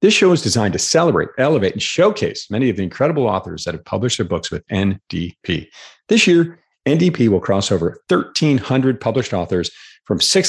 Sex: male